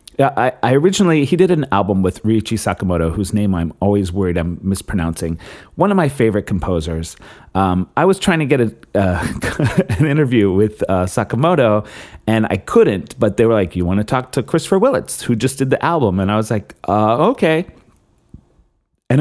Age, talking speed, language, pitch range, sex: 30-49, 195 wpm, English, 90-135 Hz, male